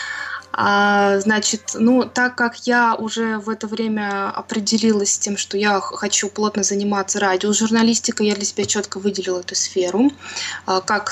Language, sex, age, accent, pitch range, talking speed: Russian, female, 20-39, native, 195-230 Hz, 145 wpm